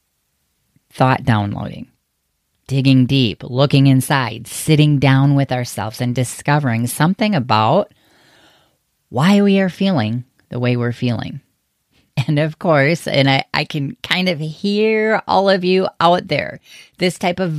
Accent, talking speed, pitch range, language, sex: American, 135 wpm, 120-160 Hz, English, female